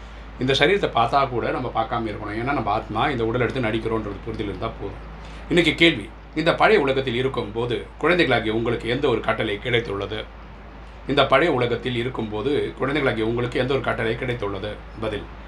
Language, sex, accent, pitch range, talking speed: Tamil, male, native, 105-125 Hz, 150 wpm